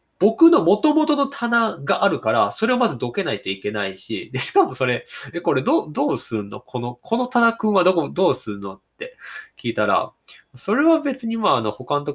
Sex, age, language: male, 20-39, Japanese